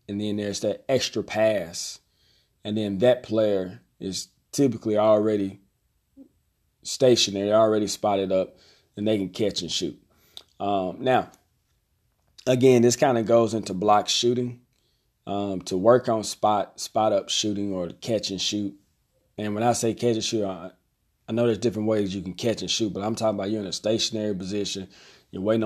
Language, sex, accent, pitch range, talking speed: English, male, American, 100-115 Hz, 175 wpm